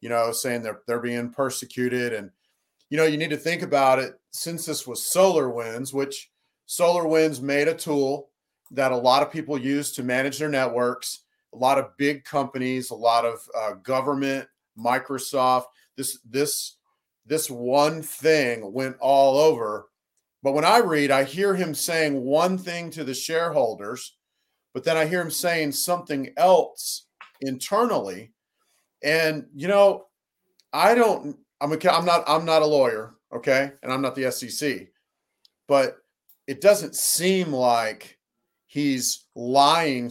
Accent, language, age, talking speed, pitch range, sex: American, English, 40-59, 165 wpm, 125-155 Hz, male